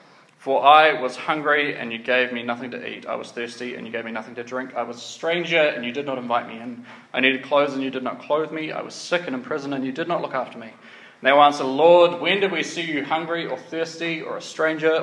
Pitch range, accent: 130-175 Hz, Australian